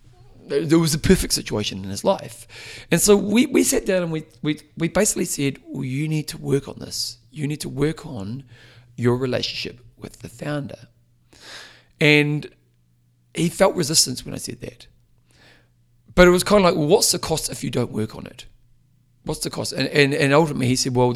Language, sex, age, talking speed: English, male, 40-59, 200 wpm